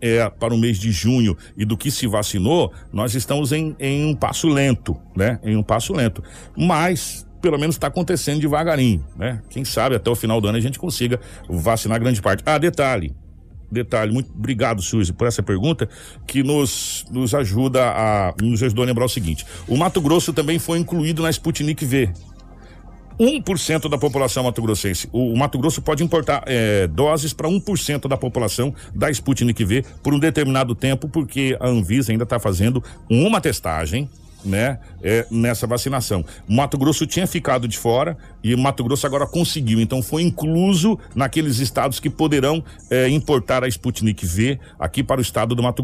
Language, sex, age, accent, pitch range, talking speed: Portuguese, male, 60-79, Brazilian, 105-145 Hz, 180 wpm